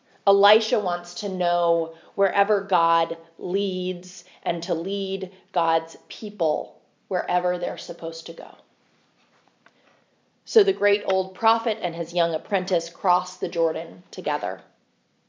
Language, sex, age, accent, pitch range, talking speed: English, female, 30-49, American, 180-225 Hz, 120 wpm